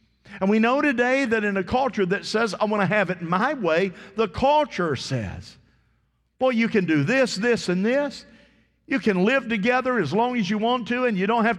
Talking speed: 215 wpm